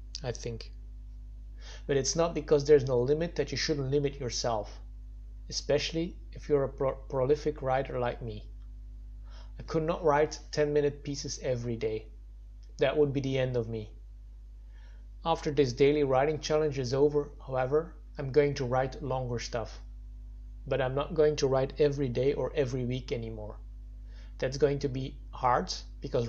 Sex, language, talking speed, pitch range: male, English, 160 wpm, 115-145 Hz